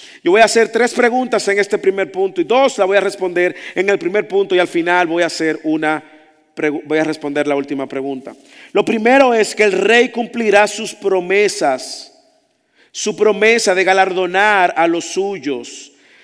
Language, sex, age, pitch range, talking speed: English, male, 50-69, 150-235 Hz, 180 wpm